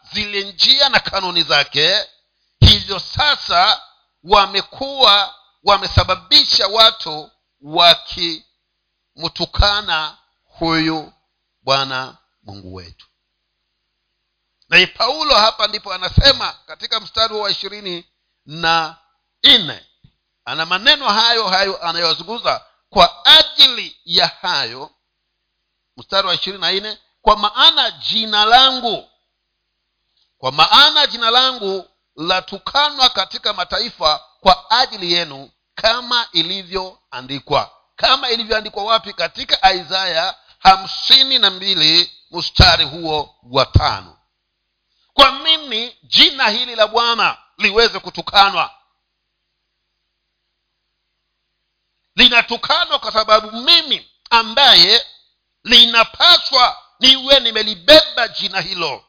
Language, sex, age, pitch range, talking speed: Swahili, male, 50-69, 170-240 Hz, 85 wpm